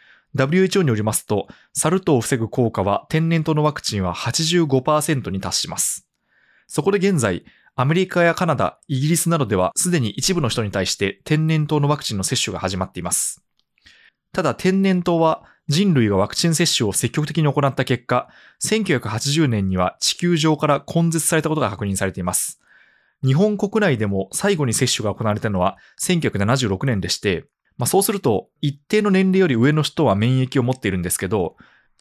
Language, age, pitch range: Japanese, 20-39, 105-170 Hz